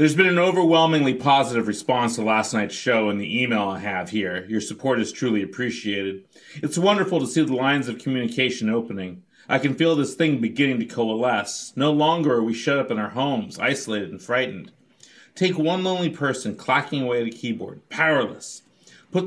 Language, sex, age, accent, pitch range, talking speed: English, male, 40-59, American, 120-160 Hz, 190 wpm